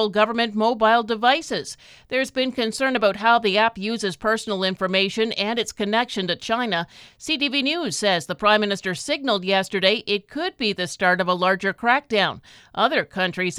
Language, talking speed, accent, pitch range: English, 165 wpm, American, 190-235 Hz